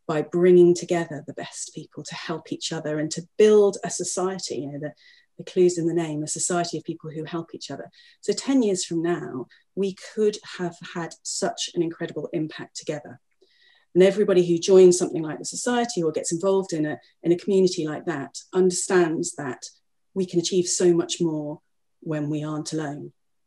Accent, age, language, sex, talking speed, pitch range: British, 30-49, English, female, 190 wpm, 155-185 Hz